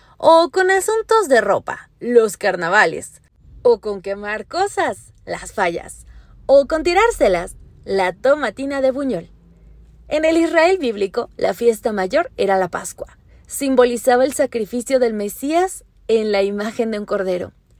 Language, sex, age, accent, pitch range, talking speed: Spanish, female, 20-39, Mexican, 210-285 Hz, 140 wpm